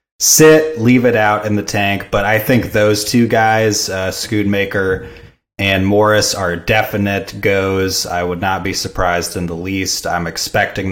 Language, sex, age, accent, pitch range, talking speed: English, male, 30-49, American, 95-115 Hz, 165 wpm